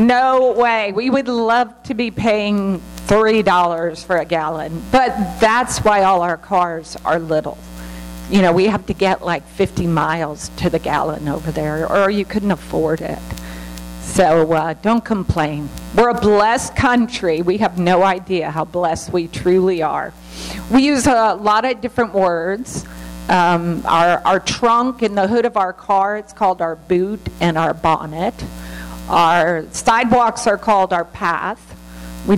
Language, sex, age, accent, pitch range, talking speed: English, female, 50-69, American, 160-215 Hz, 160 wpm